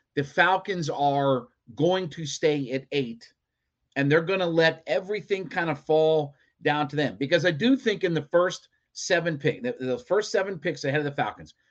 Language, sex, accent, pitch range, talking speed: English, male, American, 135-175 Hz, 195 wpm